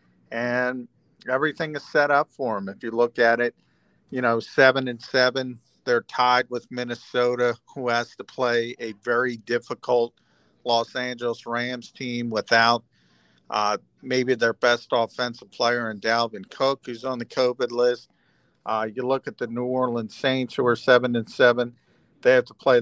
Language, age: English, 50-69